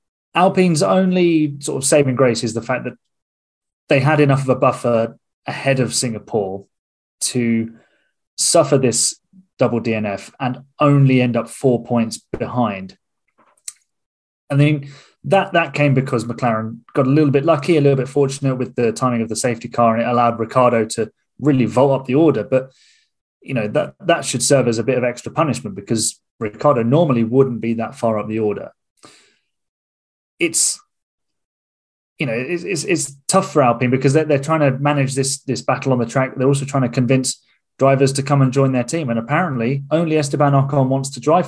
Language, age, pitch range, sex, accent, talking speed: English, 20-39, 115-145 Hz, male, British, 185 wpm